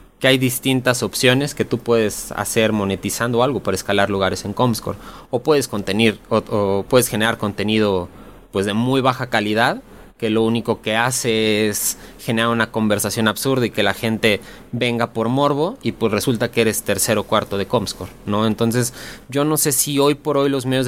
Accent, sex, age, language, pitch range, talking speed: Mexican, male, 20-39, Spanish, 110-130 Hz, 190 wpm